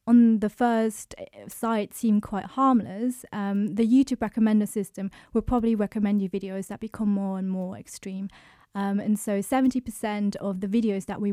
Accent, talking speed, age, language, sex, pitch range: British, 170 wpm, 20-39, English, female, 200-225 Hz